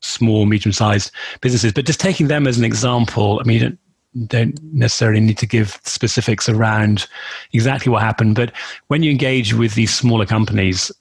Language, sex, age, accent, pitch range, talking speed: English, male, 30-49, British, 110-125 Hz, 175 wpm